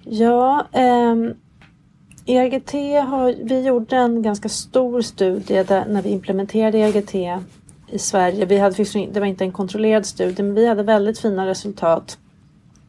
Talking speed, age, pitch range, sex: 140 wpm, 40-59, 185-210 Hz, female